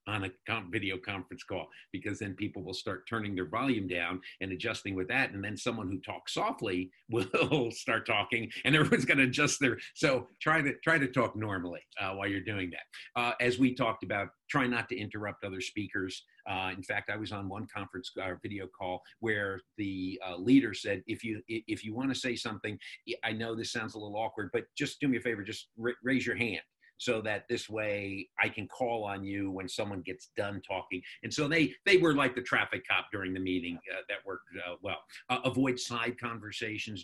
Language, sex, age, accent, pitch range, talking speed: English, male, 50-69, American, 95-120 Hz, 215 wpm